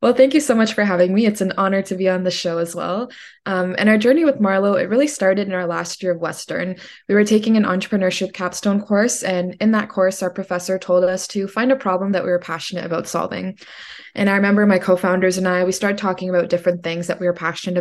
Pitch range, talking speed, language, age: 175-200 Hz, 255 wpm, English, 20-39